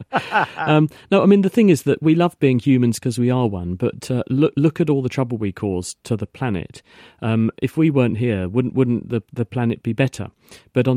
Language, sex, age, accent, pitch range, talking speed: English, male, 40-59, British, 110-130 Hz, 235 wpm